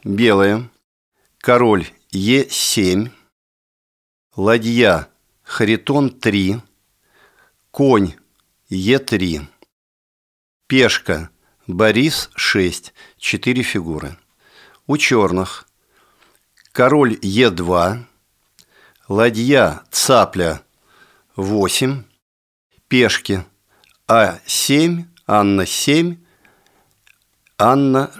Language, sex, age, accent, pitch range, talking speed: Russian, male, 50-69, native, 95-120 Hz, 55 wpm